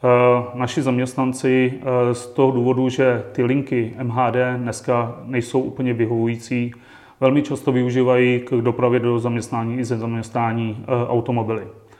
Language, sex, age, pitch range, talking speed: Czech, male, 30-49, 120-130 Hz, 120 wpm